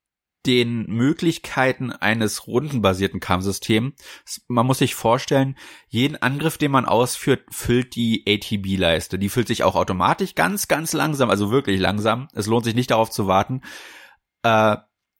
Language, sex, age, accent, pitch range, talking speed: German, male, 30-49, German, 100-130 Hz, 140 wpm